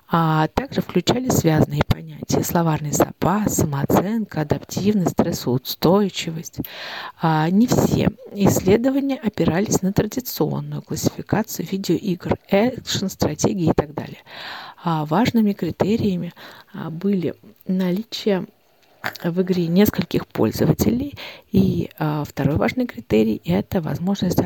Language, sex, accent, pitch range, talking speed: Russian, female, native, 155-200 Hz, 90 wpm